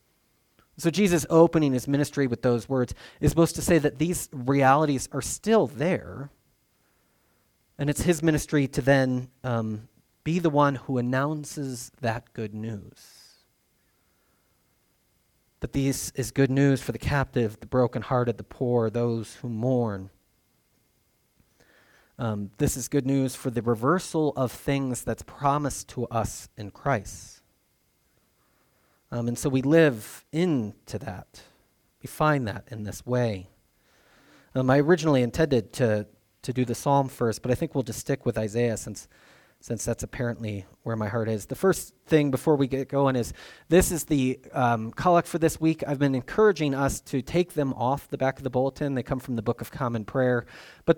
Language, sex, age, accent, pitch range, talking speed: English, male, 30-49, American, 115-145 Hz, 165 wpm